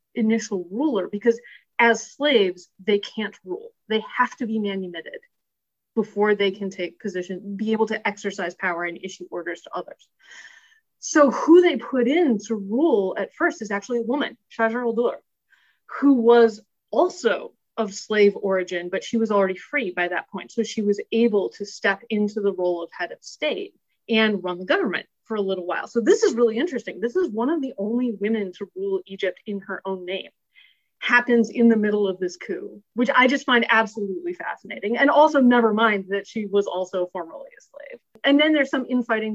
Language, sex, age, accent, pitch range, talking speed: English, female, 30-49, American, 190-240 Hz, 190 wpm